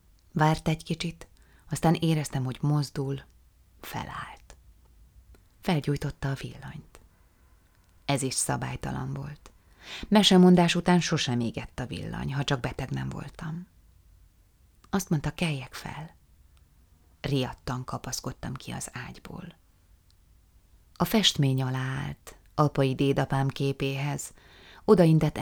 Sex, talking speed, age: female, 100 wpm, 30-49